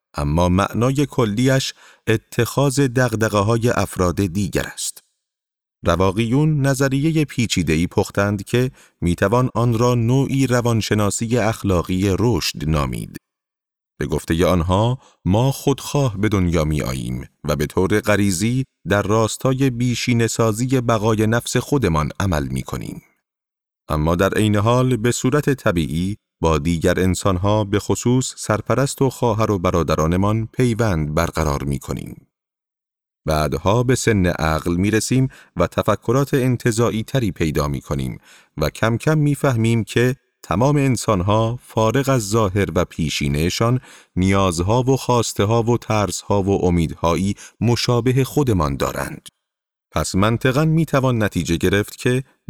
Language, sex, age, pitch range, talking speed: Persian, male, 30-49, 90-125 Hz, 120 wpm